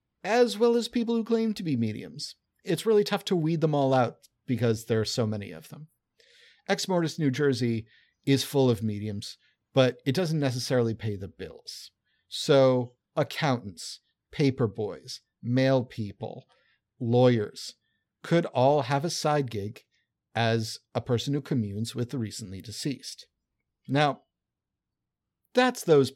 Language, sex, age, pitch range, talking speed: English, male, 50-69, 115-160 Hz, 145 wpm